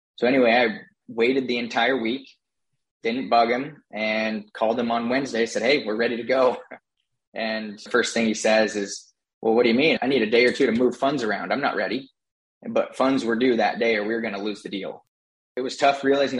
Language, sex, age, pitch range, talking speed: English, male, 20-39, 110-125 Hz, 235 wpm